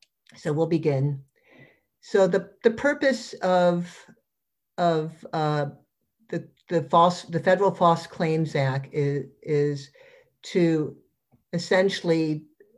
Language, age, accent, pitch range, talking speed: English, 60-79, American, 150-175 Hz, 105 wpm